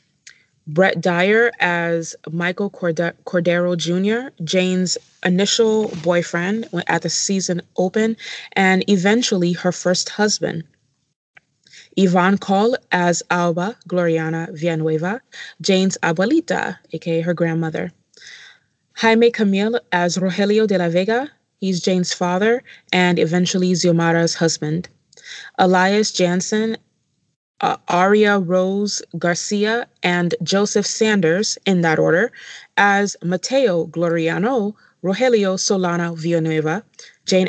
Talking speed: 100 wpm